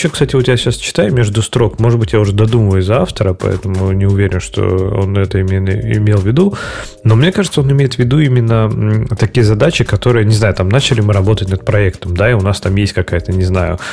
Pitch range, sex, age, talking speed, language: 100-120 Hz, male, 30-49, 230 wpm, Russian